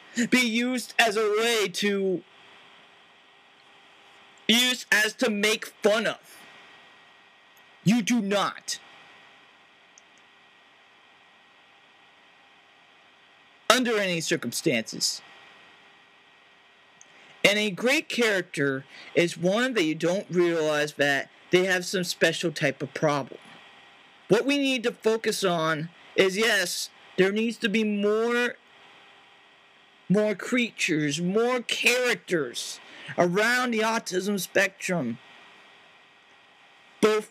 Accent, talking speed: American, 95 wpm